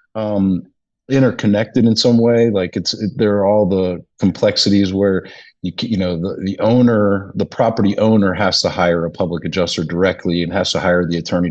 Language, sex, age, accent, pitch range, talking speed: English, male, 40-59, American, 95-120 Hz, 190 wpm